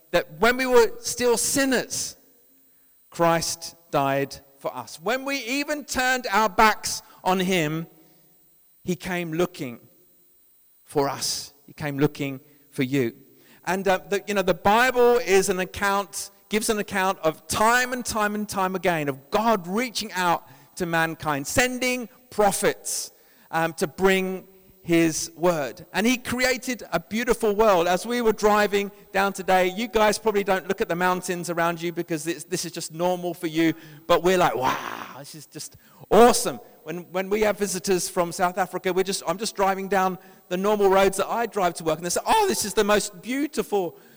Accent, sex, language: British, male, English